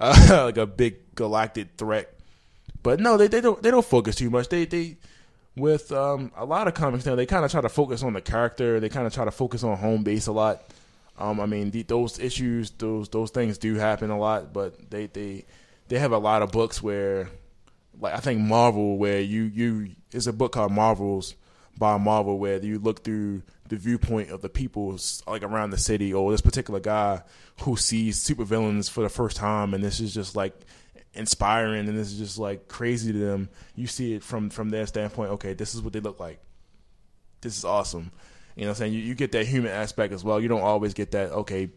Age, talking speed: 20-39, 225 wpm